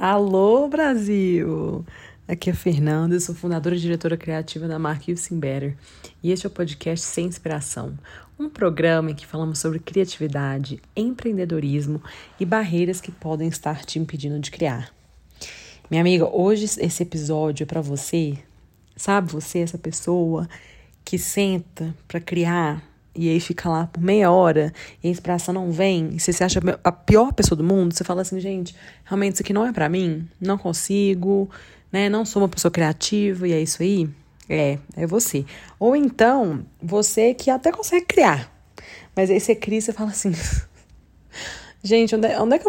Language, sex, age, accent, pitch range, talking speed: Portuguese, female, 30-49, Brazilian, 160-195 Hz, 170 wpm